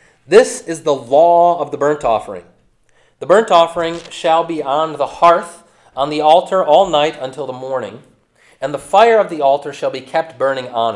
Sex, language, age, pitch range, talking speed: male, English, 30-49, 130-170 Hz, 190 wpm